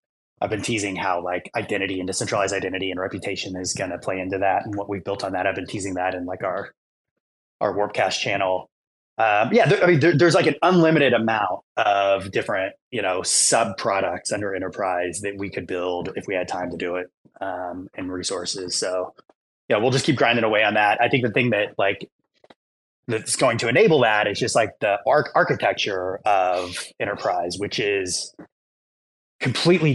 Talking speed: 195 wpm